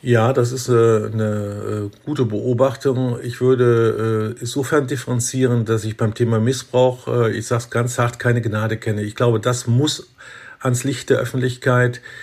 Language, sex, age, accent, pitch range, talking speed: German, male, 50-69, German, 115-130 Hz, 165 wpm